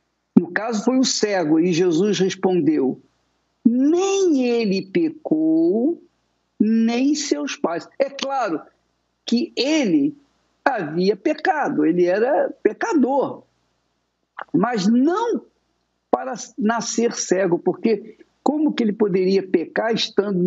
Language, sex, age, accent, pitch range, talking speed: Portuguese, male, 50-69, Brazilian, 205-295 Hz, 100 wpm